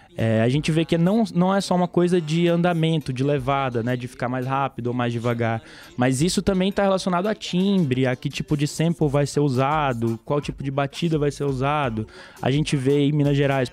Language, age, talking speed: Portuguese, 20-39, 220 wpm